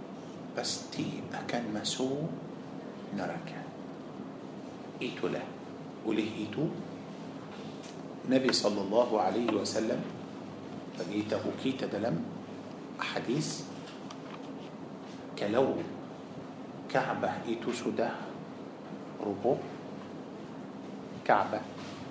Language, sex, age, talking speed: Malay, male, 50-69, 60 wpm